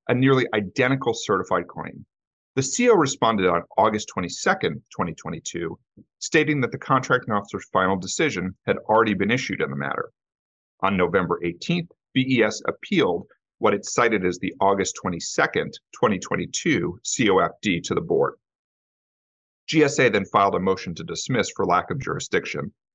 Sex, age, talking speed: male, 40-59, 140 wpm